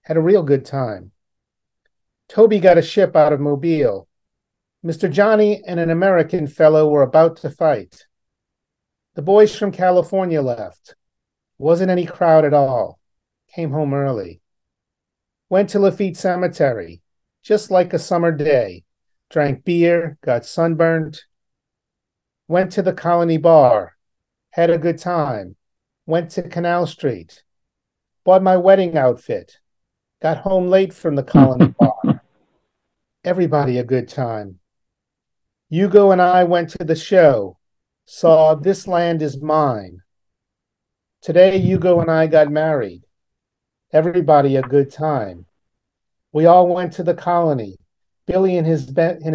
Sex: male